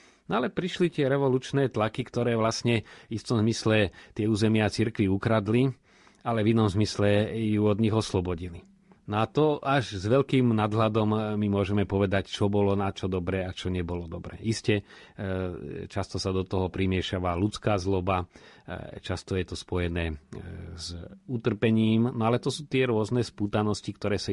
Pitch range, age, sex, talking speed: 95-110 Hz, 40-59, male, 160 wpm